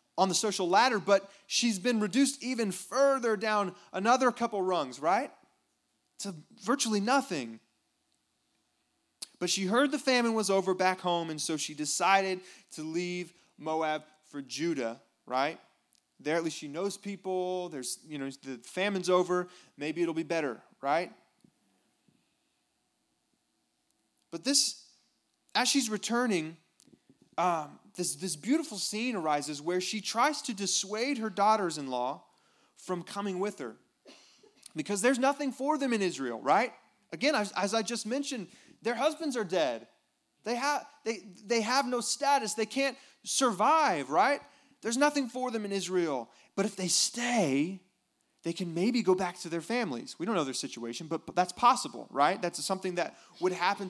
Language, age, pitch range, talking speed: English, 30-49, 175-240 Hz, 155 wpm